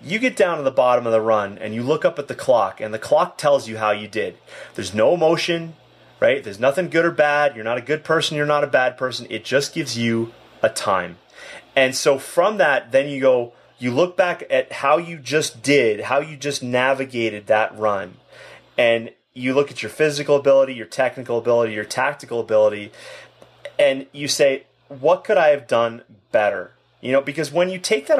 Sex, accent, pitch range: male, American, 120-165 Hz